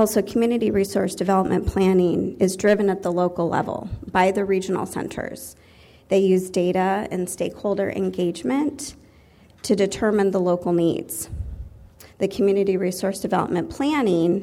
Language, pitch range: English, 175-210 Hz